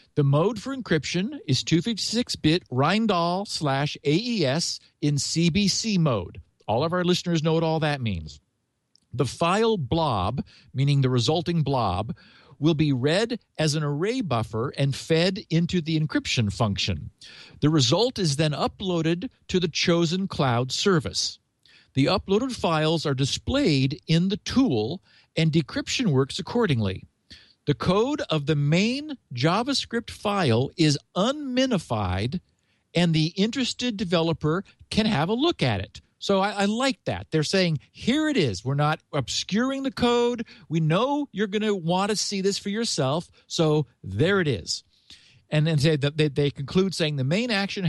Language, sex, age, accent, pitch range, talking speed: English, male, 50-69, American, 140-200 Hz, 155 wpm